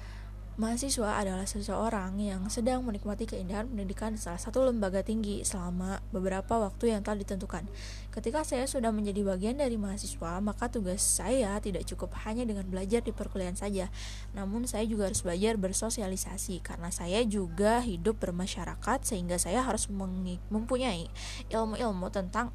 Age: 20-39